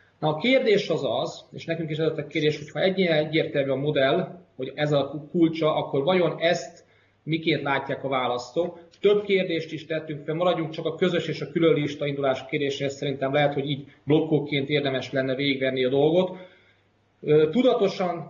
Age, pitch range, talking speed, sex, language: 30-49, 135-165 Hz, 170 wpm, male, Hungarian